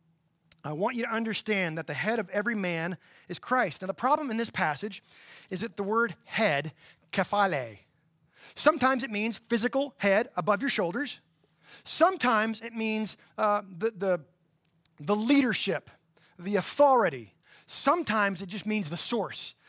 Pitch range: 180-245 Hz